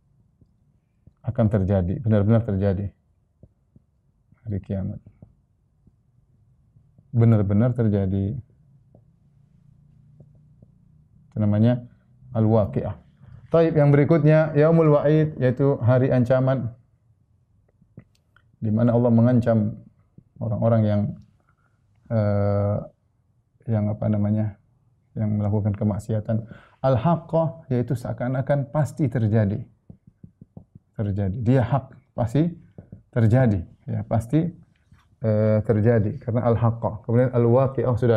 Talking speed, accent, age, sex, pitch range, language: 80 wpm, native, 30-49, male, 110-135 Hz, Indonesian